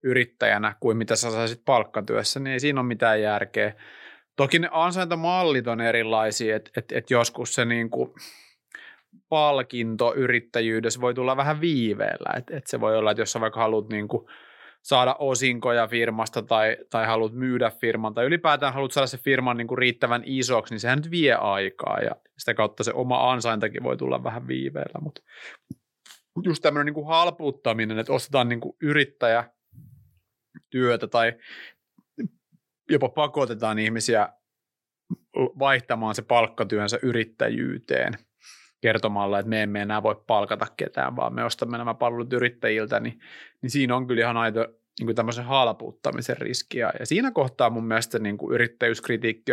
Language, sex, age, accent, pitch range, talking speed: Finnish, male, 30-49, native, 110-130 Hz, 150 wpm